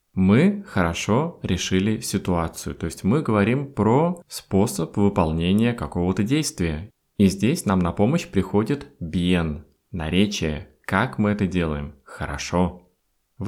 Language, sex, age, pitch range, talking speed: Russian, male, 20-39, 90-130 Hz, 125 wpm